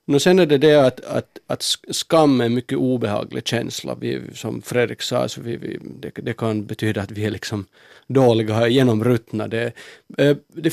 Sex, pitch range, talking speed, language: male, 115-140 Hz, 190 wpm, Finnish